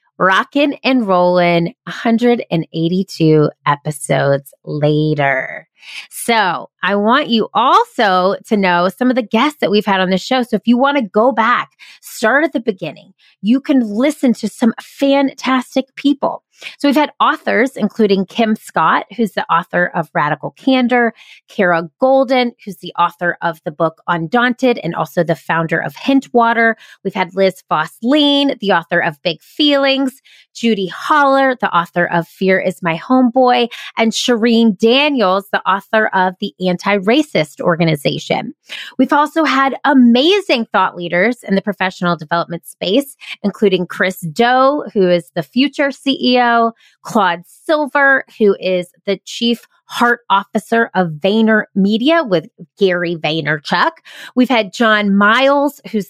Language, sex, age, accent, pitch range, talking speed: English, female, 30-49, American, 180-260 Hz, 145 wpm